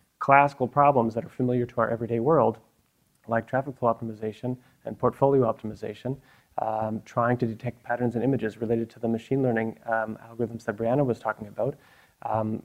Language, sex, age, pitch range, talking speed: English, male, 30-49, 115-130 Hz, 170 wpm